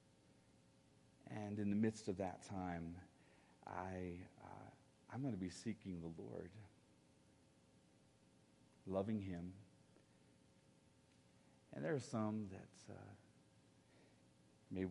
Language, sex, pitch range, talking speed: English, male, 85-105 Hz, 105 wpm